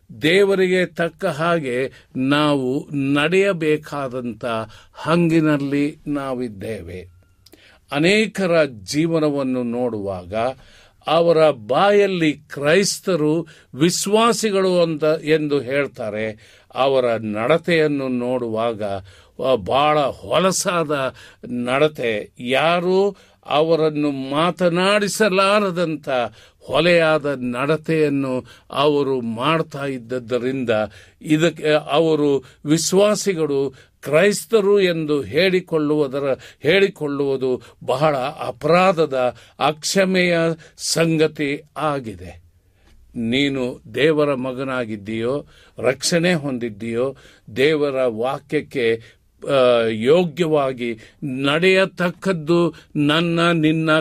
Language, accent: Kannada, native